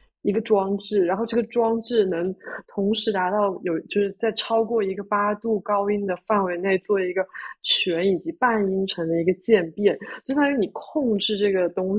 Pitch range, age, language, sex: 195-245 Hz, 20-39, Chinese, female